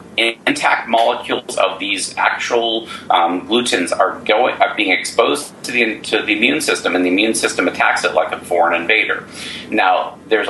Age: 40-59